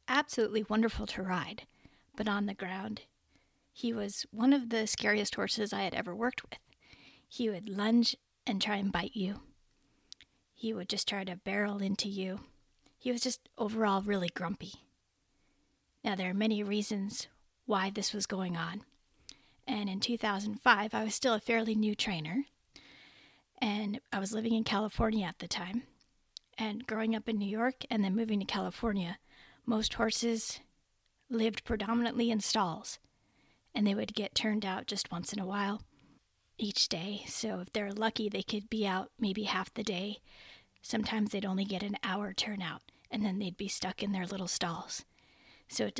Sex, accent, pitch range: female, American, 195-225 Hz